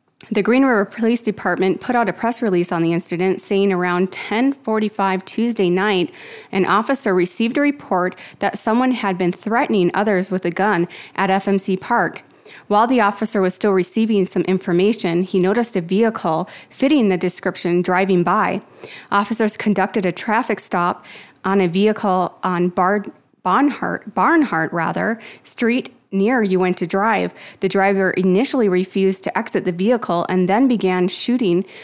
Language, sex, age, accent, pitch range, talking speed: English, female, 30-49, American, 180-215 Hz, 155 wpm